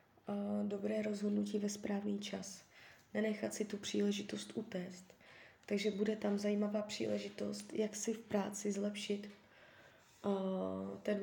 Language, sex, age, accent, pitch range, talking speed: Czech, female, 20-39, native, 195-215 Hz, 110 wpm